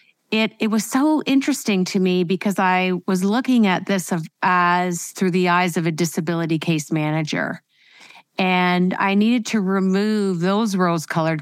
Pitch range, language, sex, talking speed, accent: 165-190 Hz, English, female, 160 wpm, American